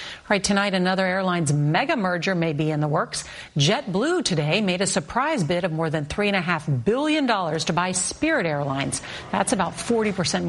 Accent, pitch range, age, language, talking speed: American, 160-210 Hz, 50-69, English, 170 wpm